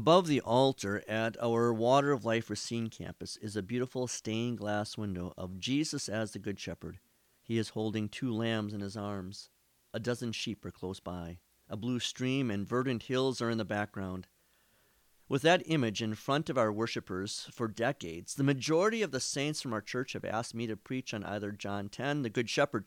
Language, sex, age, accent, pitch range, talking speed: English, male, 40-59, American, 100-130 Hz, 200 wpm